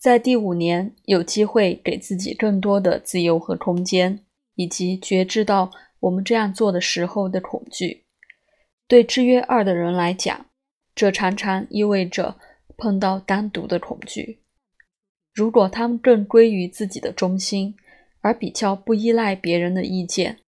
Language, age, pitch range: Chinese, 20-39, 180-220 Hz